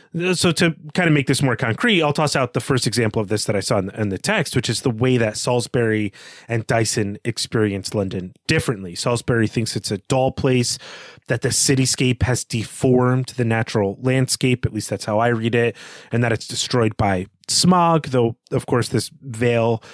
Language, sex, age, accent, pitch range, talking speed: English, male, 30-49, American, 110-140 Hz, 195 wpm